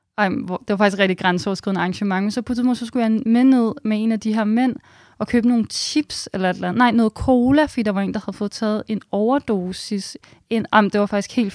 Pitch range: 195-245 Hz